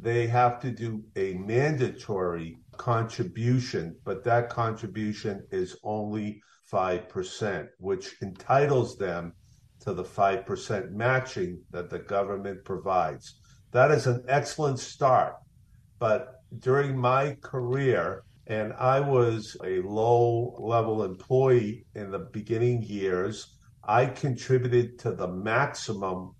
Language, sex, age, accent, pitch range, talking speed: English, male, 50-69, American, 105-130 Hz, 110 wpm